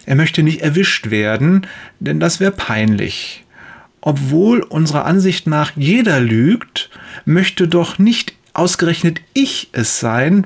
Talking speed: 125 wpm